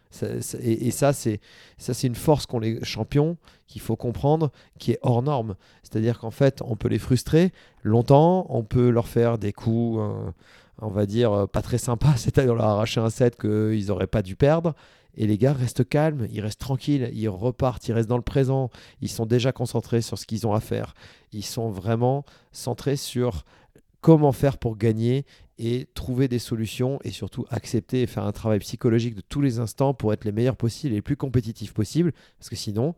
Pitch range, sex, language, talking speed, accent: 110-130 Hz, male, French, 195 wpm, French